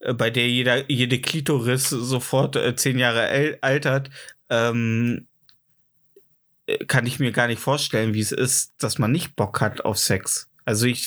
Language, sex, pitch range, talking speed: German, male, 130-155 Hz, 155 wpm